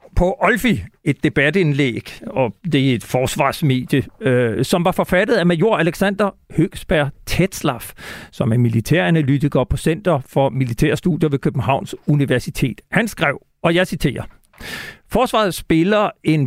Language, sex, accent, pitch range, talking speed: Danish, male, native, 135-180 Hz, 130 wpm